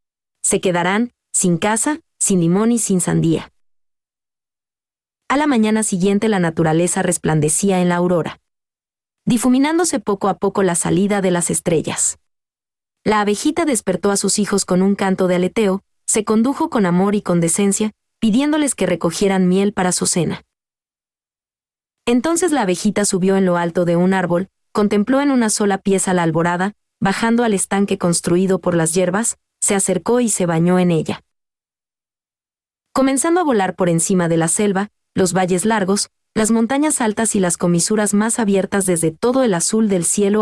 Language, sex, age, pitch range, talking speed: Spanish, female, 30-49, 180-220 Hz, 160 wpm